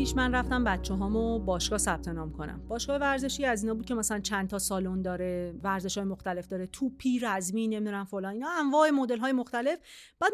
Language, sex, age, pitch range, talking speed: Persian, female, 40-59, 215-305 Hz, 190 wpm